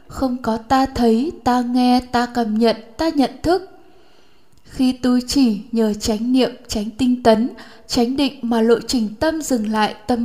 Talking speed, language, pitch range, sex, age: 175 wpm, Vietnamese, 230-275 Hz, female, 10-29